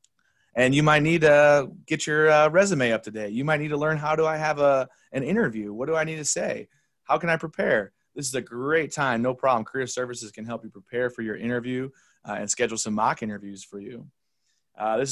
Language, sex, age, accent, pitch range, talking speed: English, male, 30-49, American, 115-150 Hz, 220 wpm